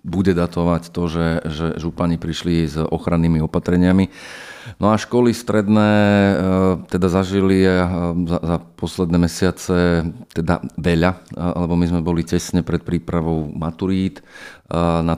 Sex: male